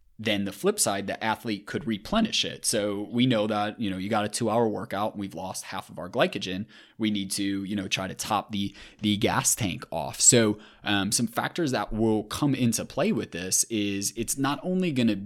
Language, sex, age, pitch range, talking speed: English, male, 20-39, 100-120 Hz, 225 wpm